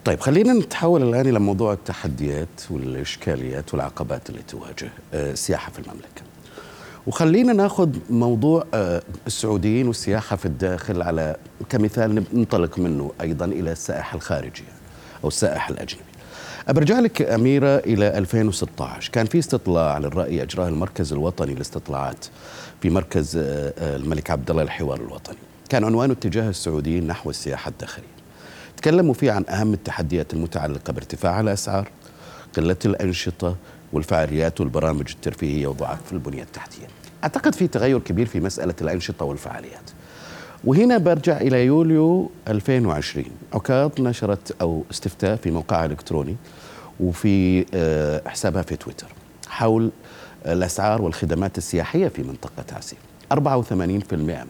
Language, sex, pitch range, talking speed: Arabic, male, 80-120 Hz, 115 wpm